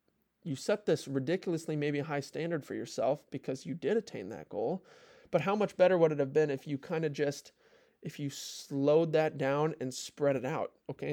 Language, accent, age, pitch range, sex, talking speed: English, American, 20-39, 135-170 Hz, male, 205 wpm